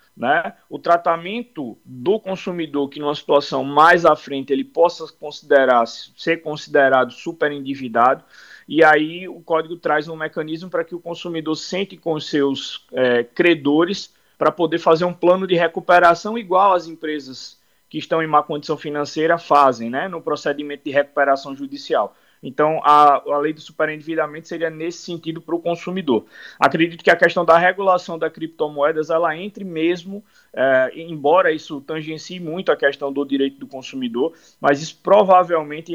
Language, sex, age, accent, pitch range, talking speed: Portuguese, male, 20-39, Brazilian, 145-170 Hz, 155 wpm